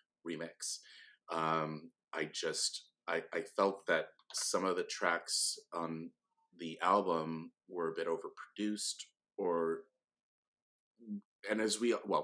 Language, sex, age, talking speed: English, male, 30-49, 120 wpm